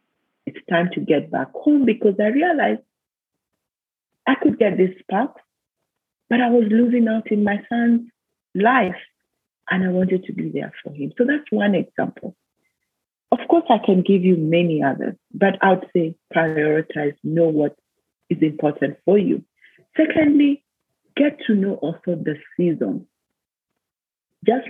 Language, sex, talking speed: English, female, 150 wpm